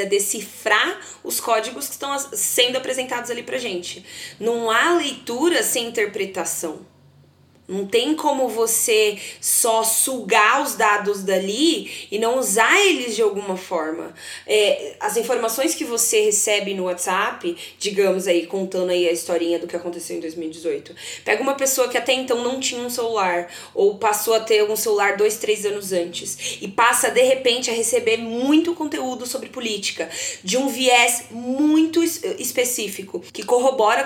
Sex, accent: female, Brazilian